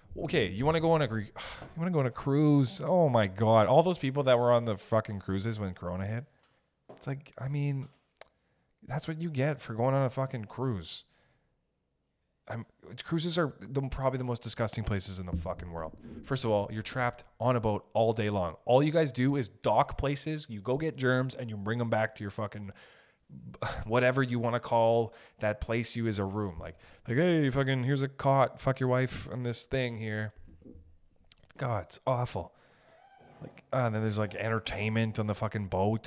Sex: male